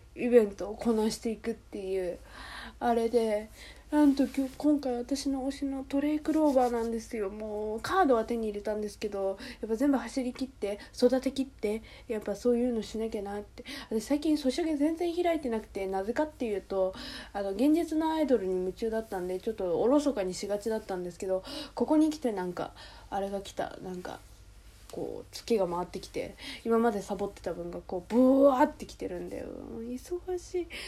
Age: 20-39